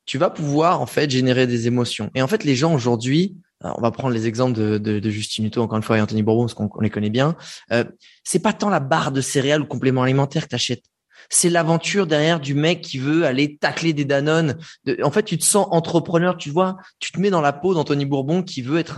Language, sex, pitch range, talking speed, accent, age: French, male, 130-170 Hz, 260 wpm, French, 20-39